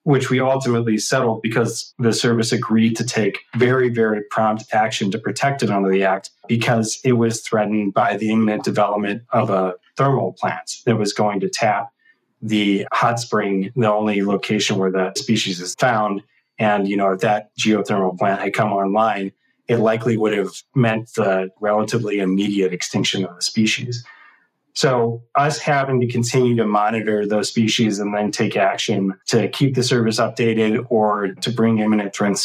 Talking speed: 170 wpm